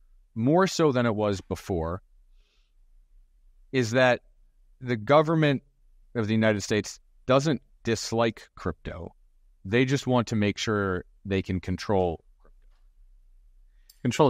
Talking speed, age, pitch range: 115 wpm, 30-49, 90-120 Hz